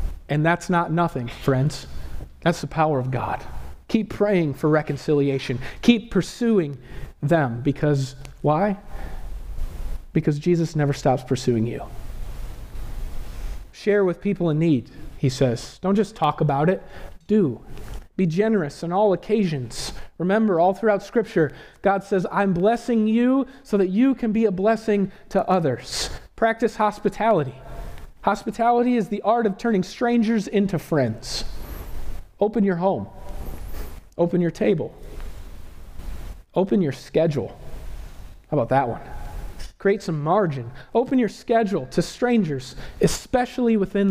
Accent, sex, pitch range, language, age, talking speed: American, male, 125-205 Hz, English, 40-59, 130 wpm